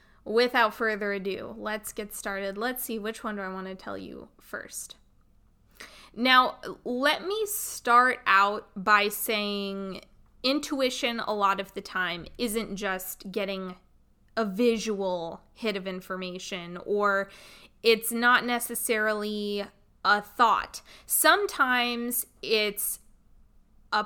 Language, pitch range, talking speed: English, 195-235 Hz, 115 wpm